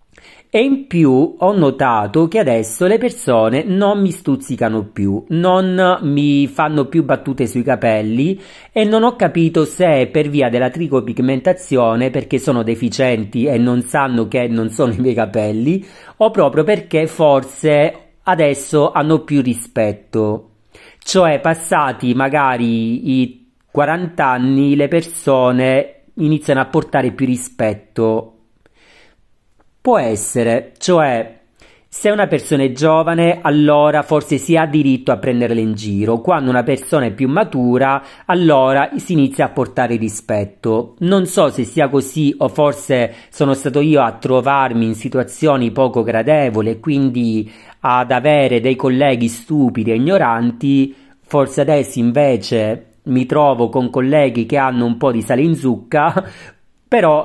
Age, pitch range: 40-59, 120-155 Hz